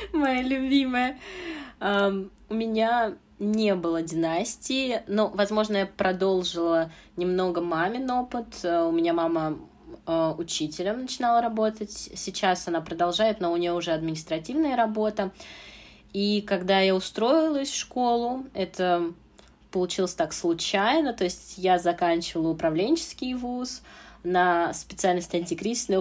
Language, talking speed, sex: Russian, 110 wpm, female